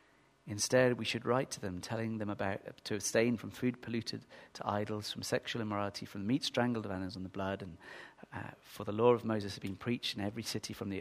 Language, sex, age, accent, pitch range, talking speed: English, male, 40-59, British, 115-155 Hz, 240 wpm